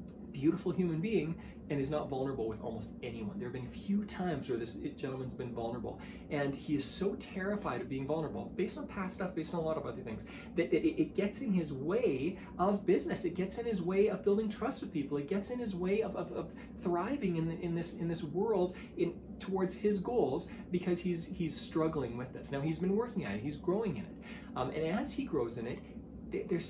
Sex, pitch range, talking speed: male, 150-220 Hz, 225 wpm